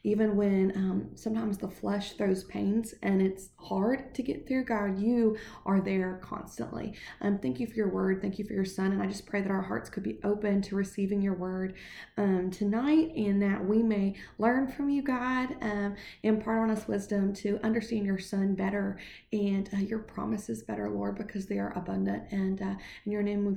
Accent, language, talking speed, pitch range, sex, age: American, English, 205 wpm, 190-220 Hz, female, 20-39